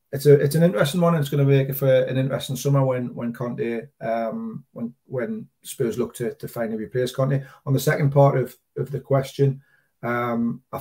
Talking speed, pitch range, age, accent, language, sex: 215 wpm, 120-135 Hz, 30-49, British, English, male